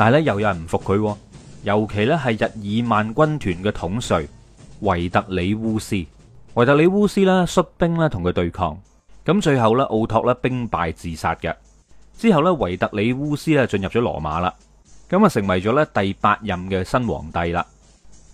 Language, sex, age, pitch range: Chinese, male, 30-49, 95-130 Hz